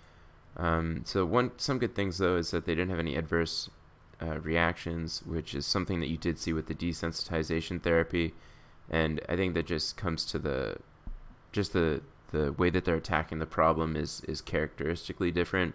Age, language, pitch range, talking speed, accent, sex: 20-39, English, 75-85 Hz, 185 wpm, American, male